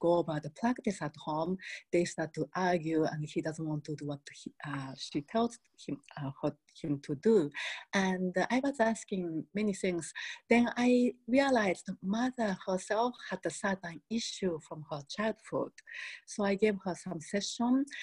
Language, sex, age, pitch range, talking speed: English, female, 40-59, 160-215 Hz, 160 wpm